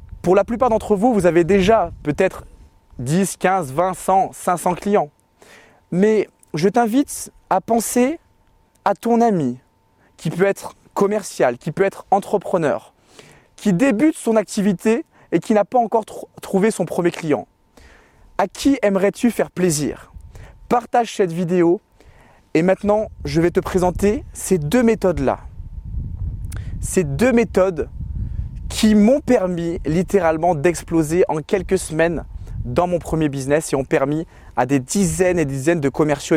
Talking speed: 140 wpm